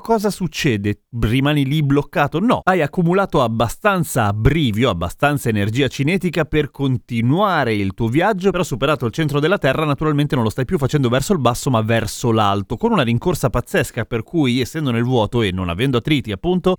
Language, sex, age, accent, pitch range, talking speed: Italian, male, 30-49, native, 115-165 Hz, 180 wpm